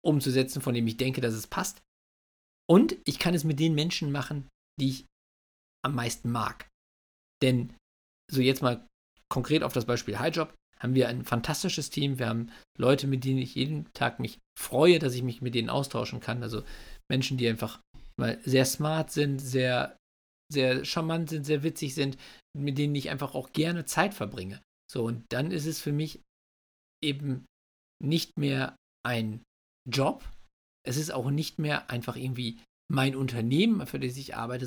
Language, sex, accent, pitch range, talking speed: German, male, German, 125-160 Hz, 175 wpm